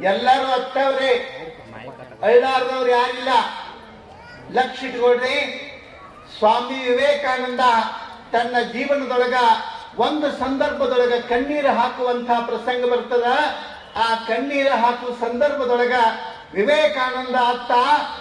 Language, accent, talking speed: Kannada, native, 75 wpm